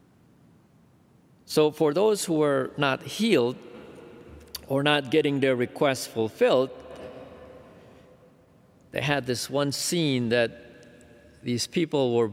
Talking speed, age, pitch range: 105 wpm, 50-69, 140-200 Hz